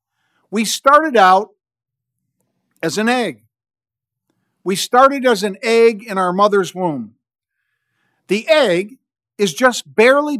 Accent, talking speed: American, 115 wpm